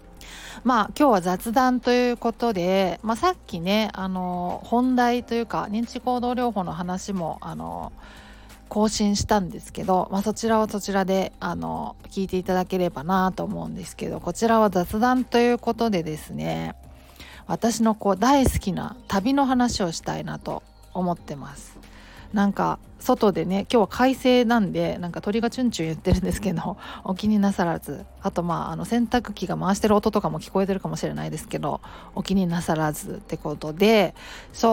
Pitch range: 170-230 Hz